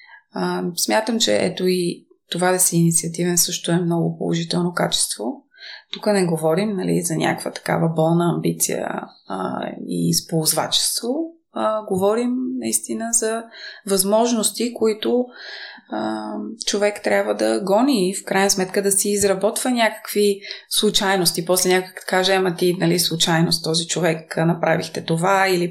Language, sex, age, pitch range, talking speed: Bulgarian, female, 20-39, 170-235 Hz, 135 wpm